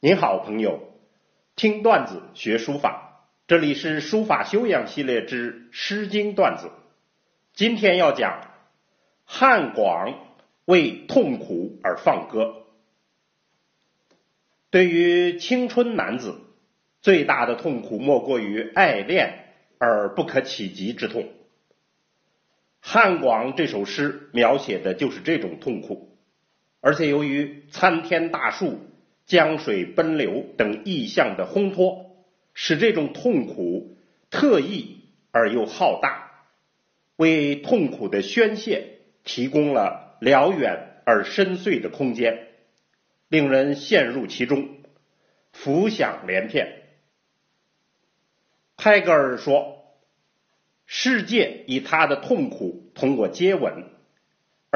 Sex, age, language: male, 50-69, Chinese